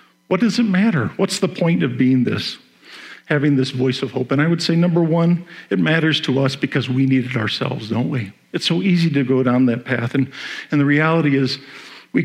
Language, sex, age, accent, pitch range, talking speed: English, male, 50-69, American, 130-165 Hz, 225 wpm